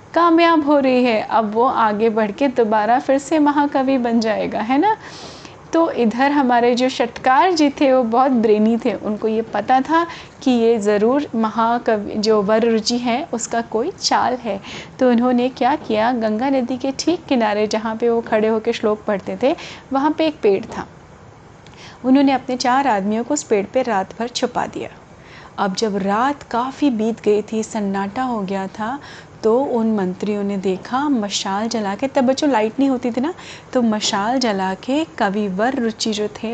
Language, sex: Hindi, female